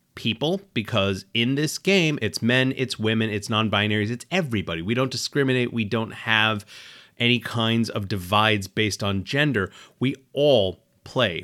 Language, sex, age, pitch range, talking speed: English, male, 30-49, 110-150 Hz, 150 wpm